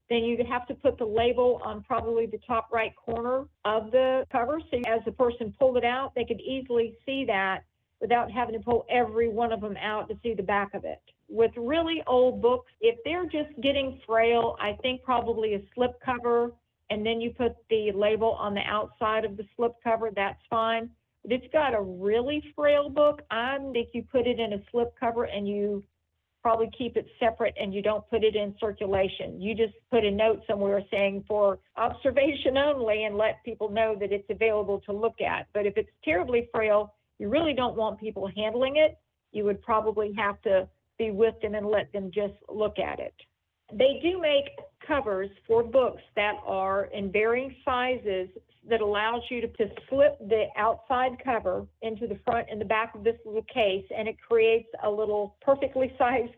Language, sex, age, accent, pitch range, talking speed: English, female, 50-69, American, 210-250 Hz, 200 wpm